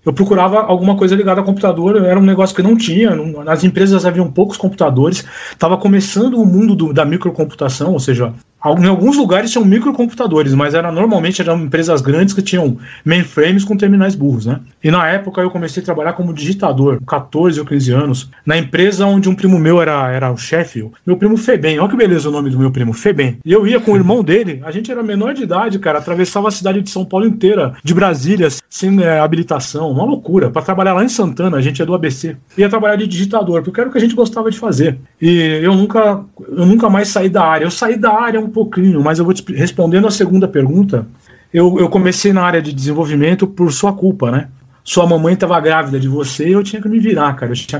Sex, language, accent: male, Portuguese, Brazilian